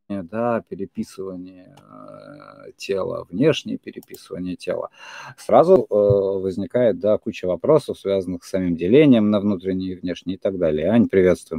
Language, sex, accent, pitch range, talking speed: Russian, male, native, 100-135 Hz, 135 wpm